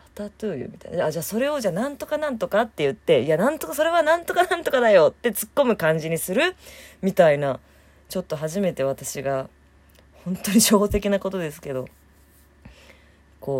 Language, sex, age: Japanese, female, 20-39